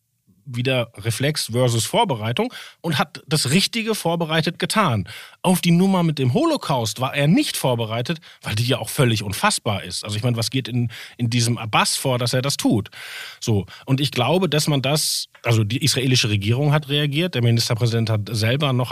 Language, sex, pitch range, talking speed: German, male, 125-165 Hz, 185 wpm